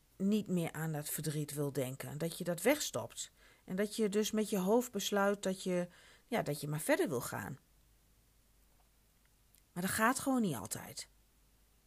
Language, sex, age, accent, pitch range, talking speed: Dutch, female, 40-59, Dutch, 160-235 Hz, 170 wpm